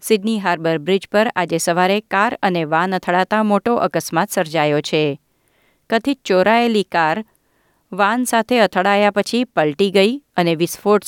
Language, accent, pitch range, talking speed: Gujarati, native, 175-225 Hz, 135 wpm